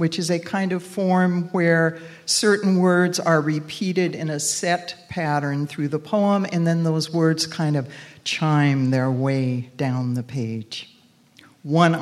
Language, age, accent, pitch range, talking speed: English, 60-79, American, 140-180 Hz, 155 wpm